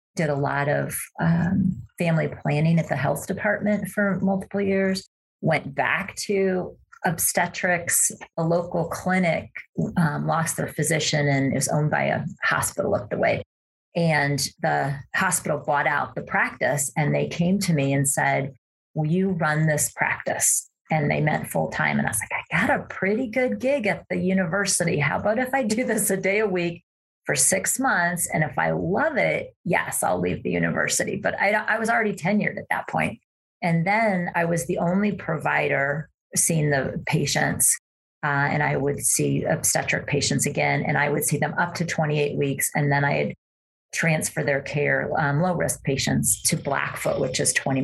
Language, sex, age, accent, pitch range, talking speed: English, female, 40-59, American, 140-195 Hz, 180 wpm